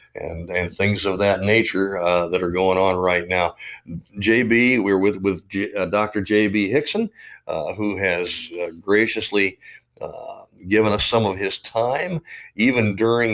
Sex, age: male, 50-69